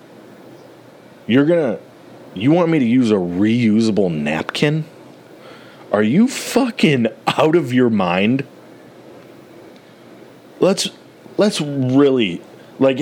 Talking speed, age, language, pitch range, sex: 100 wpm, 30-49, English, 115-160 Hz, male